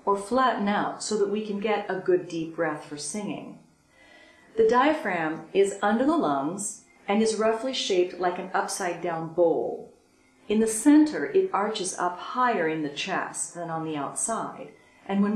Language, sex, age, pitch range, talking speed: English, female, 40-59, 170-230 Hz, 170 wpm